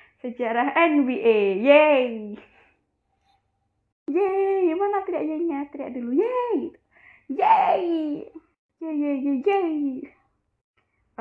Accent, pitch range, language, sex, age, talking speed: native, 225-290 Hz, Indonesian, female, 20-39, 75 wpm